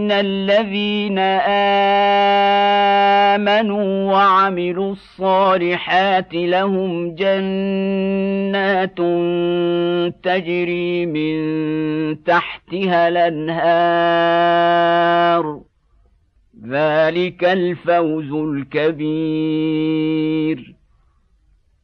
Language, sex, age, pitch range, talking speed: Arabic, male, 50-69, 155-195 Hz, 35 wpm